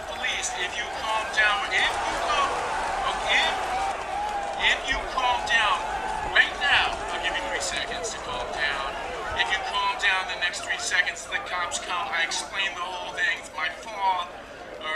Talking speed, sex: 165 wpm, male